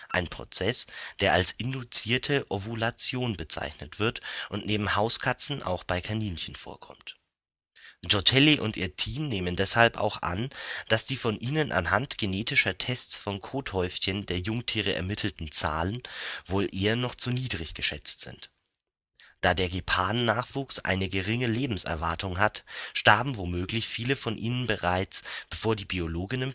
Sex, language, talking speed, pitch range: male, German, 135 wpm, 90-125 Hz